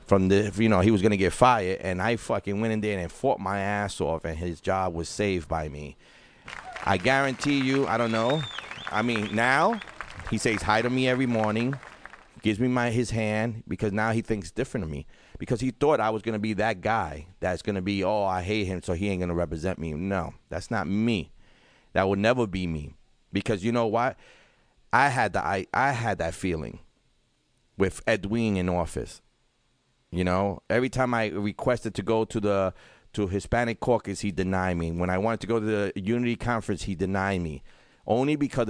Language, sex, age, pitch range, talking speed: English, male, 30-49, 95-120 Hz, 205 wpm